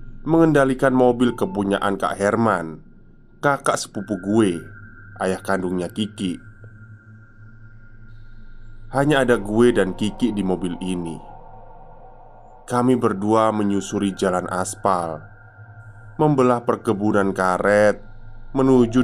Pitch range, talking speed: 100-120 Hz, 90 wpm